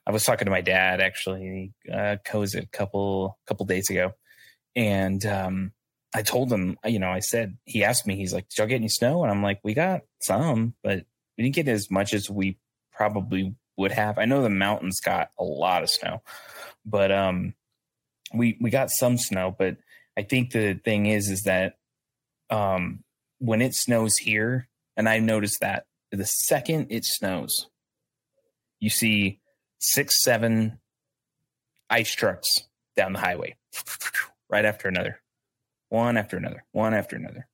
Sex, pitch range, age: male, 95-115 Hz, 20-39